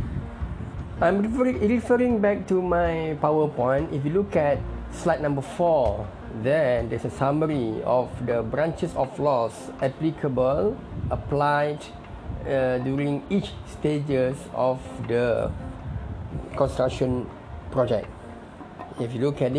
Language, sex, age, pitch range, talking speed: English, male, 20-39, 120-150 Hz, 110 wpm